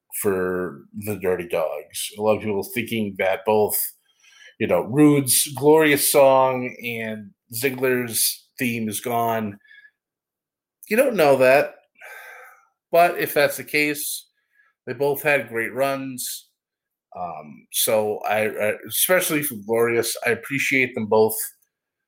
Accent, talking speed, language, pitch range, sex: American, 120 wpm, English, 115-150 Hz, male